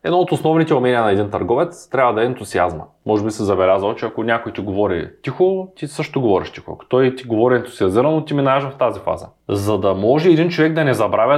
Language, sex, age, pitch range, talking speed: Bulgarian, male, 20-39, 115-155 Hz, 225 wpm